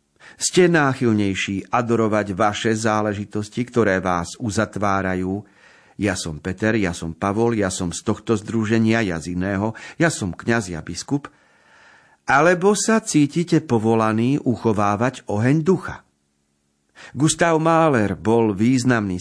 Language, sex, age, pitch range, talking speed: Slovak, male, 50-69, 100-135 Hz, 120 wpm